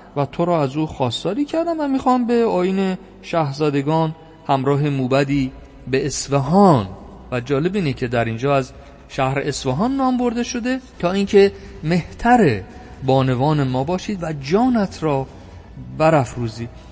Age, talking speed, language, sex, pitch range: 50-69, 135 wpm, Persian, male, 130-180 Hz